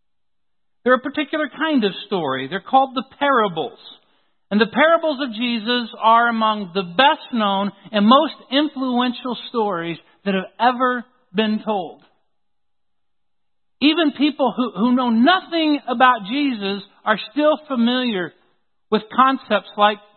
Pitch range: 185-265 Hz